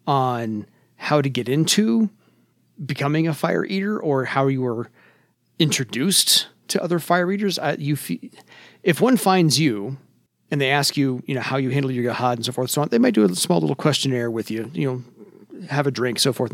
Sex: male